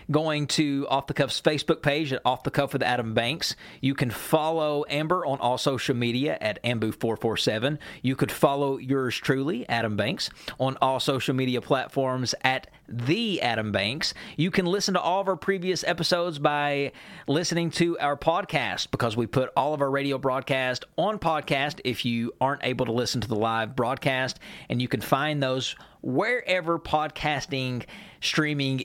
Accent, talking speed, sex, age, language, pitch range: American, 165 wpm, male, 40-59, English, 125-150 Hz